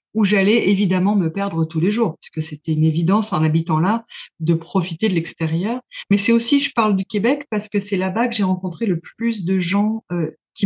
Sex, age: female, 30-49